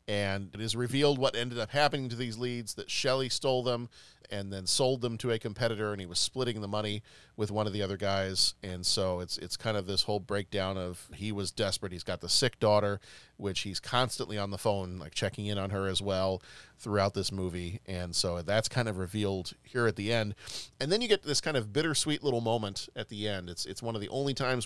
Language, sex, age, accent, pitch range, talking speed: English, male, 40-59, American, 100-125 Hz, 240 wpm